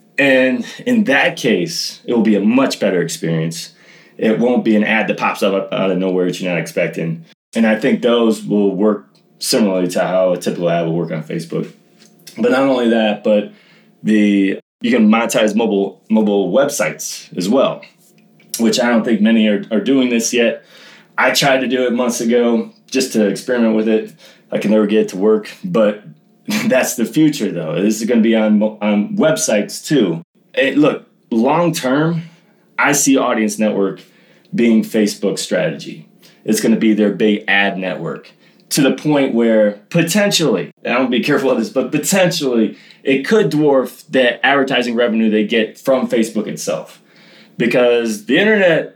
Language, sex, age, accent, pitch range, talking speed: English, male, 20-39, American, 105-135 Hz, 180 wpm